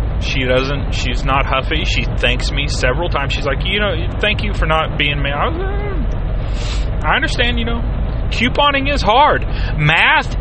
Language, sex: English, male